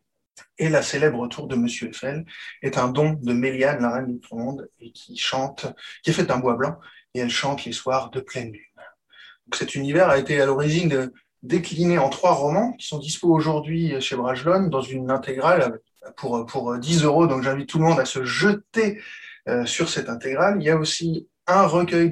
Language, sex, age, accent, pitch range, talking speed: French, male, 20-39, French, 130-170 Hz, 200 wpm